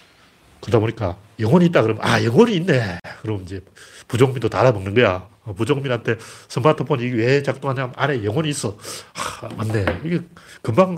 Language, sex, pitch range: Korean, male, 110-155 Hz